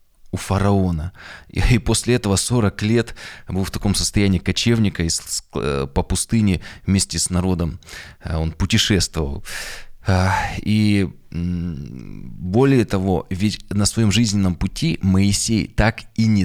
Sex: male